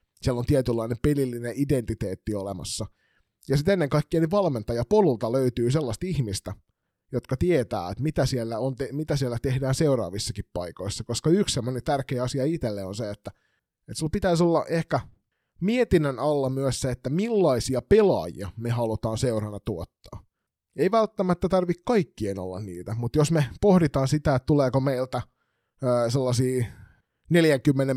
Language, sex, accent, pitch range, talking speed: Finnish, male, native, 115-145 Hz, 145 wpm